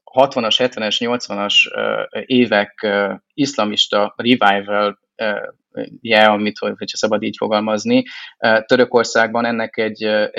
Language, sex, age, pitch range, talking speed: Hungarian, male, 20-39, 105-130 Hz, 120 wpm